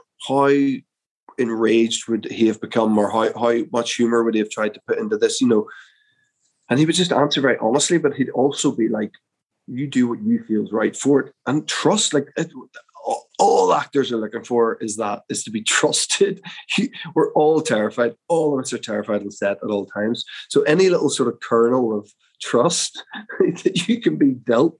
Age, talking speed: 20-39, 200 wpm